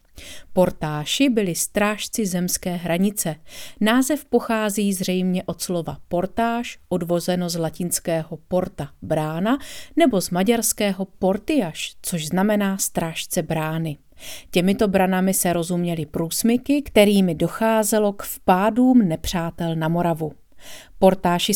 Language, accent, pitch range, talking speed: Czech, native, 175-220 Hz, 105 wpm